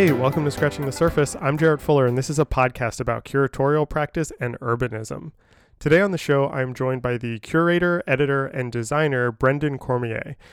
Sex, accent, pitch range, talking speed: male, American, 120-150 Hz, 190 wpm